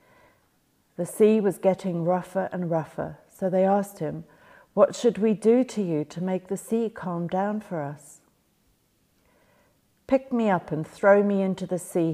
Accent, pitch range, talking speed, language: British, 165-200 Hz, 170 wpm, English